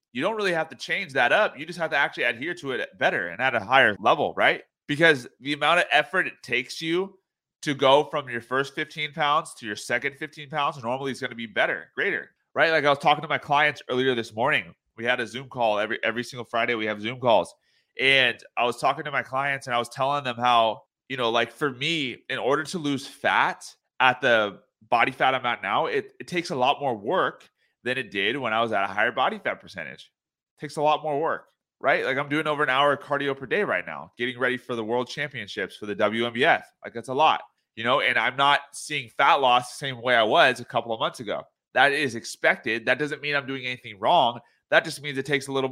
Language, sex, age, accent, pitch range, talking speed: English, male, 30-49, American, 125-155 Hz, 250 wpm